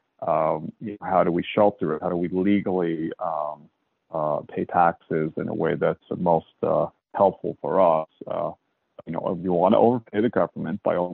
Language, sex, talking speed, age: English, male, 200 wpm, 40-59